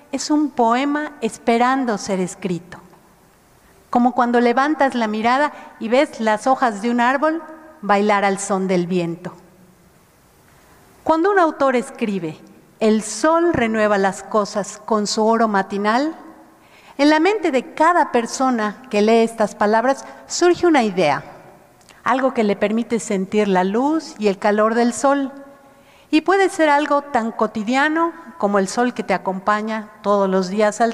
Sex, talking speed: female, 150 wpm